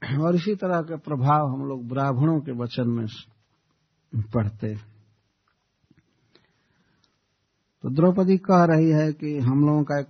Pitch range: 120-155 Hz